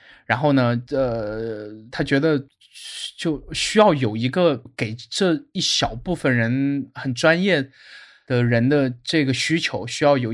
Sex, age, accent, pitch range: male, 20-39, native, 120-145 Hz